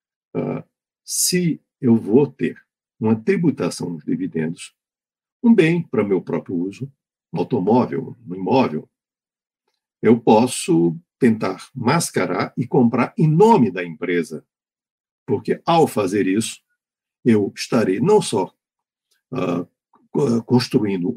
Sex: male